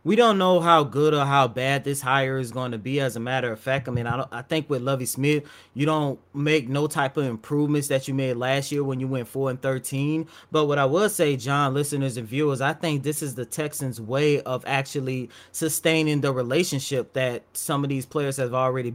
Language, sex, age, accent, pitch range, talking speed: English, male, 20-39, American, 130-150 Hz, 235 wpm